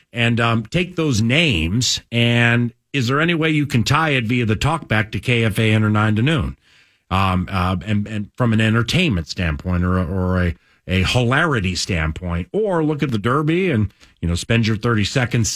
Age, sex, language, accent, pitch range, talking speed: 50-69, male, English, American, 90-125 Hz, 205 wpm